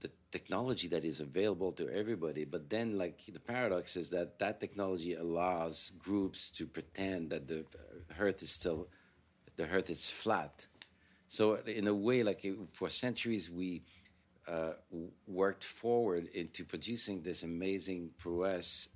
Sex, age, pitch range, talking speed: male, 60-79, 80-95 Hz, 140 wpm